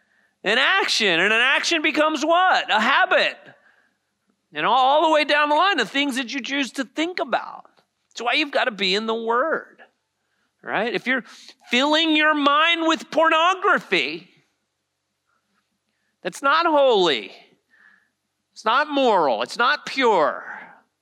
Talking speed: 145 wpm